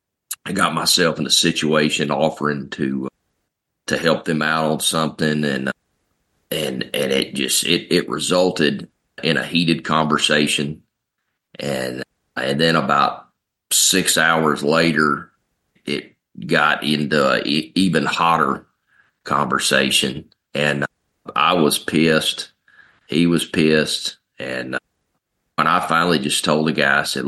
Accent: American